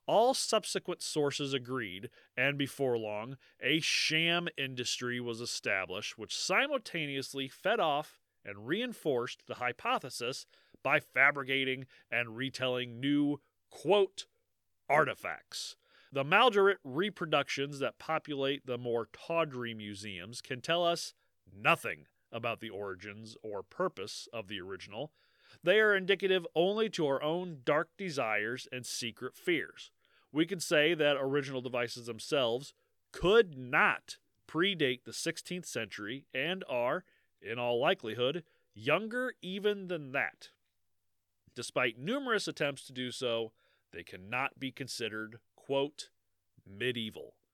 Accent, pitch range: American, 120-170 Hz